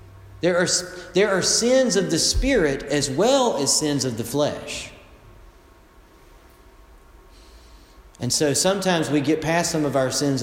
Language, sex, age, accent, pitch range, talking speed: English, male, 40-59, American, 135-225 Hz, 145 wpm